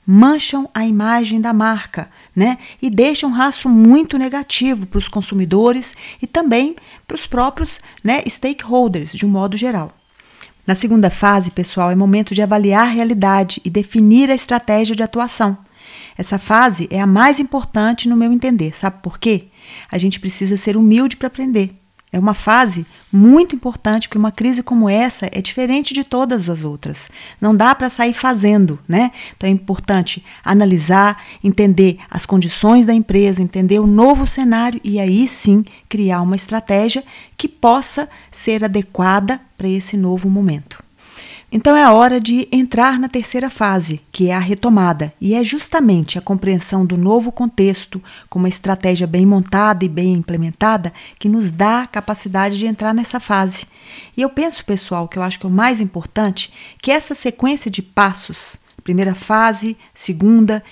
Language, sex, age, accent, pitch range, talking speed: Portuguese, female, 40-59, Brazilian, 195-245 Hz, 165 wpm